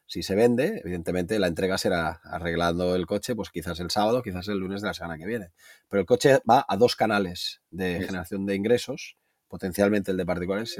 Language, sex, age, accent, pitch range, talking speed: Spanish, male, 30-49, Spanish, 95-115 Hz, 210 wpm